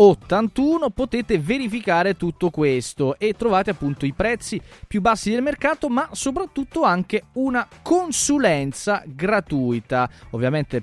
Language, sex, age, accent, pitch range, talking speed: Italian, male, 20-39, native, 135-215 Hz, 115 wpm